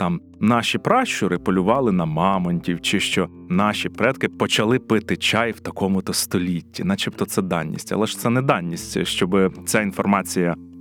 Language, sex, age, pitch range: Ukrainian, male, 30-49, 95-135 Hz